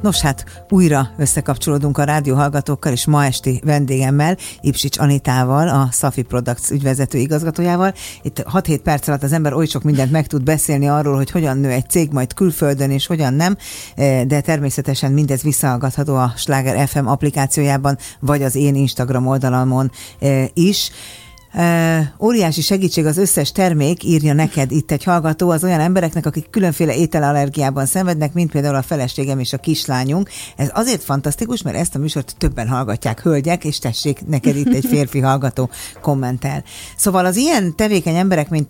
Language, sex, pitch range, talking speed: Hungarian, female, 135-160 Hz, 160 wpm